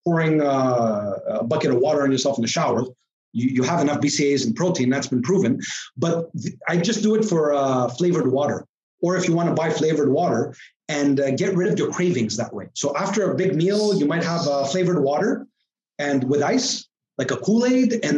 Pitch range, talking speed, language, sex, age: 140-185 Hz, 215 wpm, English, male, 30-49